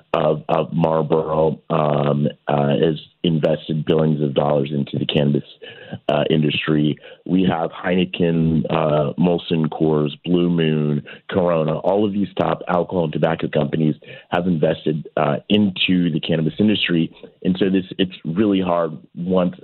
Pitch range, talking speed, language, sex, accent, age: 75-90 Hz, 140 wpm, English, male, American, 30-49